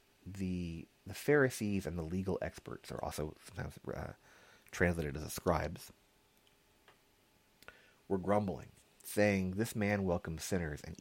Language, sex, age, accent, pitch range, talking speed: English, male, 30-49, American, 80-100 Hz, 125 wpm